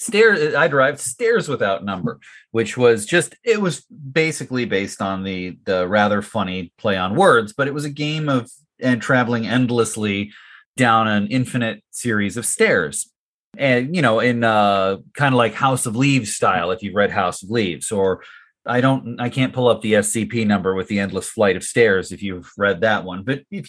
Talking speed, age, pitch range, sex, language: 195 wpm, 30-49, 110-150 Hz, male, English